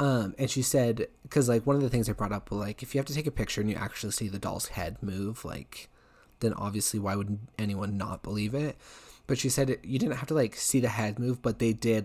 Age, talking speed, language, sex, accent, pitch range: 20-39, 265 wpm, English, male, American, 105-120 Hz